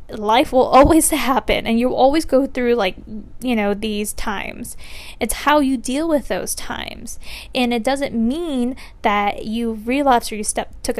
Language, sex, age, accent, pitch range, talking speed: English, female, 10-29, American, 220-285 Hz, 170 wpm